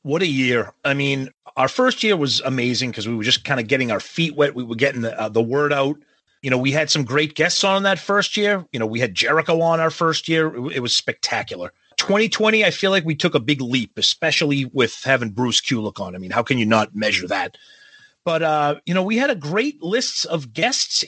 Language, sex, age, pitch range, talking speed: English, male, 30-49, 135-185 Hz, 250 wpm